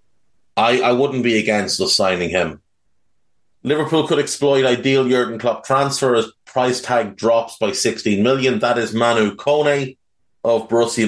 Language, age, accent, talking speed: English, 30-49, Irish, 150 wpm